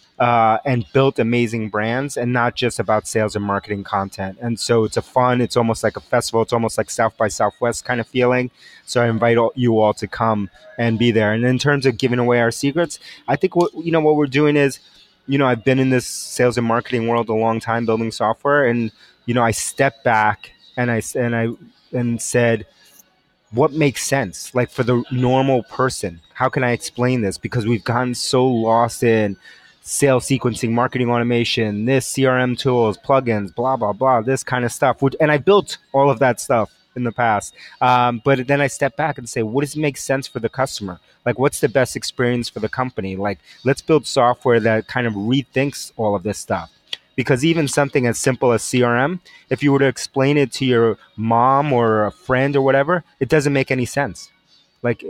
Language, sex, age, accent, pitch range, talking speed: English, male, 30-49, American, 115-135 Hz, 210 wpm